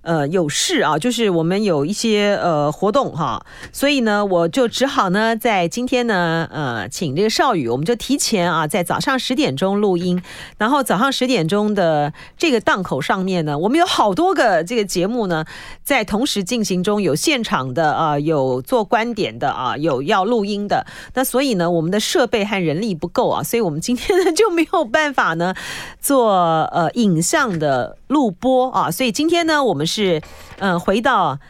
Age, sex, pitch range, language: 40-59, female, 175-255 Hz, Chinese